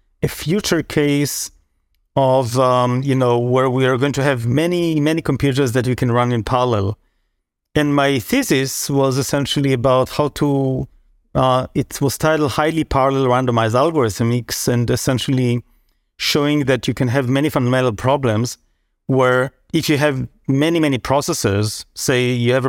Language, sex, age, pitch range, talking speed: English, male, 30-49, 120-145 Hz, 155 wpm